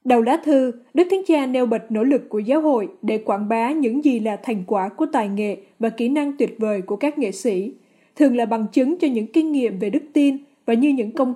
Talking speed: 255 wpm